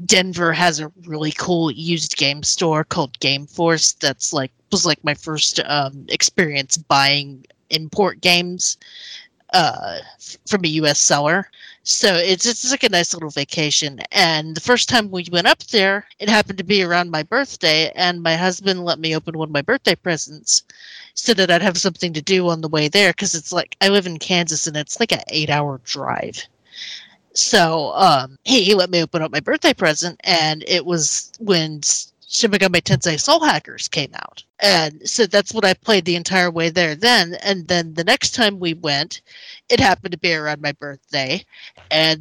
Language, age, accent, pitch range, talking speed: English, 30-49, American, 155-200 Hz, 190 wpm